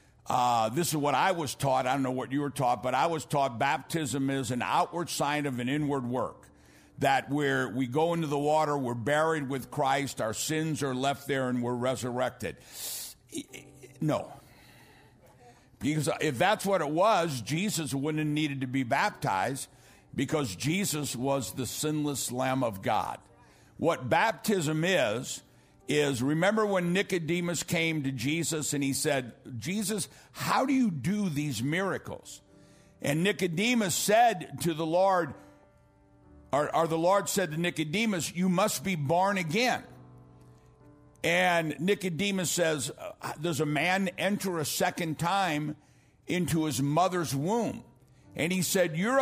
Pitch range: 135-180 Hz